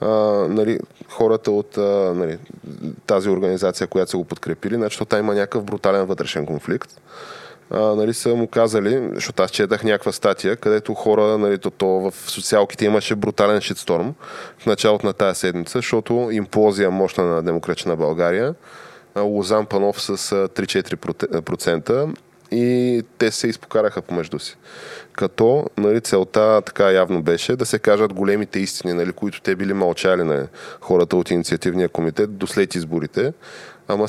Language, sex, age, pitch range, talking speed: Bulgarian, male, 20-39, 95-110 Hz, 150 wpm